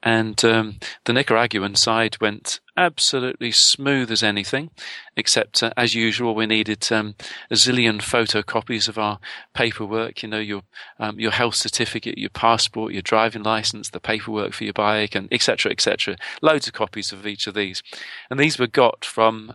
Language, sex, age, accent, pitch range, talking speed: English, male, 40-59, British, 105-125 Hz, 170 wpm